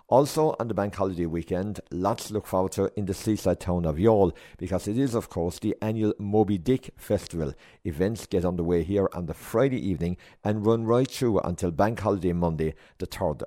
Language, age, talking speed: English, 50-69, 205 wpm